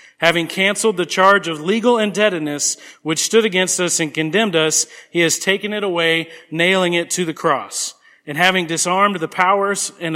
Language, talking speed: English, 175 wpm